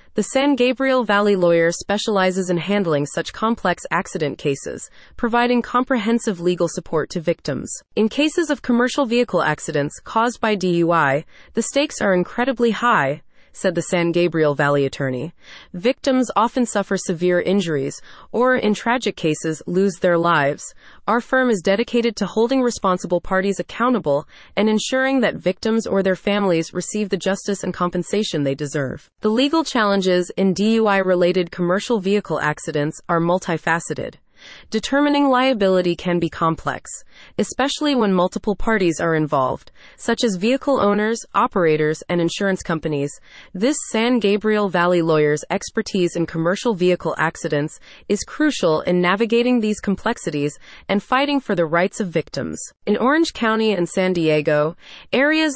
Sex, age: female, 30-49